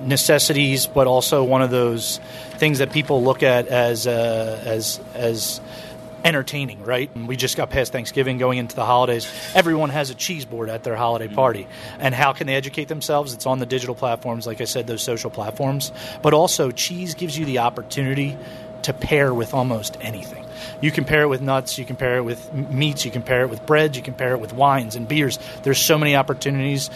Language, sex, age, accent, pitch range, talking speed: English, male, 30-49, American, 125-145 Hz, 210 wpm